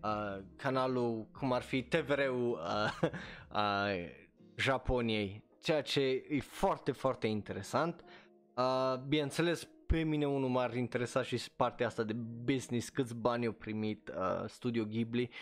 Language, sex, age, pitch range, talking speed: Romanian, male, 20-39, 110-140 Hz, 135 wpm